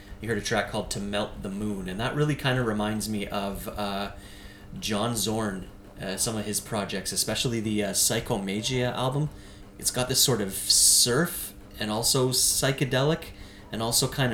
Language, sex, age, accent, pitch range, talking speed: English, male, 30-49, American, 100-120 Hz, 175 wpm